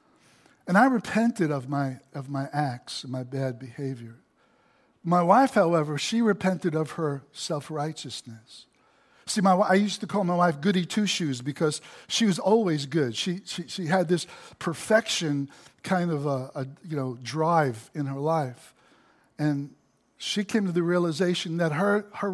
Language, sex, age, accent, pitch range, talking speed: English, male, 60-79, American, 145-200 Hz, 160 wpm